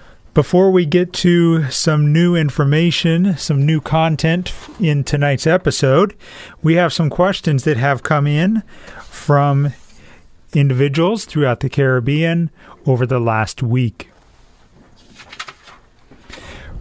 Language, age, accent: English, 40-59, American